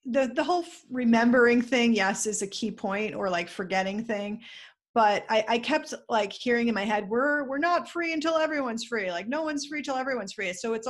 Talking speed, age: 220 wpm, 30-49